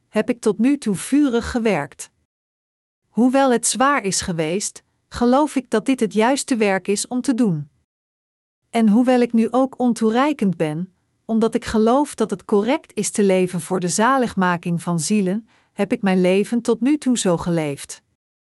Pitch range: 195-250 Hz